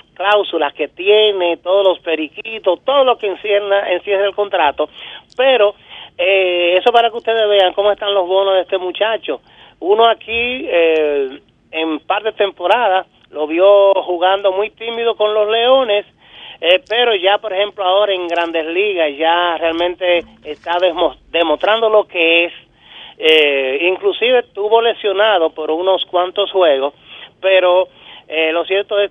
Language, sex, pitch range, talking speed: Spanish, male, 170-215 Hz, 145 wpm